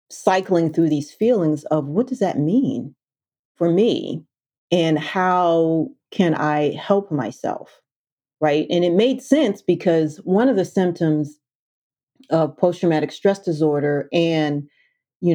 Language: English